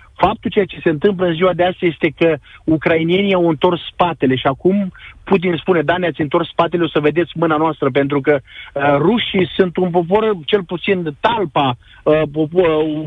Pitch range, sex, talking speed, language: 150-185 Hz, male, 190 wpm, Romanian